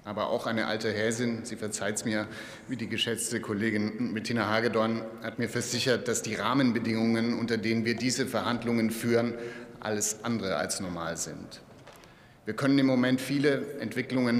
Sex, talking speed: male, 160 wpm